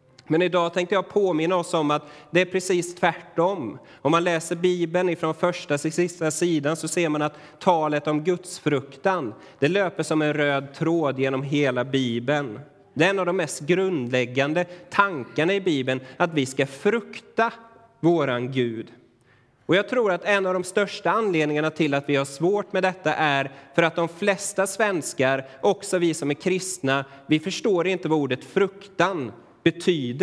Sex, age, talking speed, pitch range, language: male, 30-49, 175 wpm, 145-185 Hz, Swedish